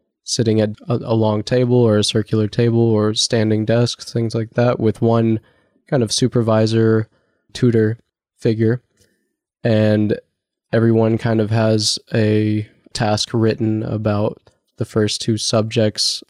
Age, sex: 20-39, male